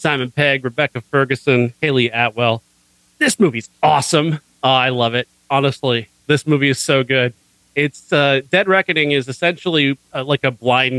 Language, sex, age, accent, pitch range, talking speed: English, male, 40-59, American, 120-140 Hz, 160 wpm